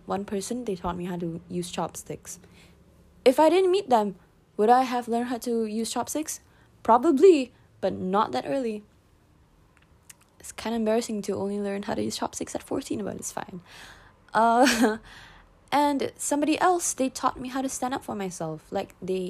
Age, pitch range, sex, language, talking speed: 20-39, 175-220 Hz, female, English, 180 wpm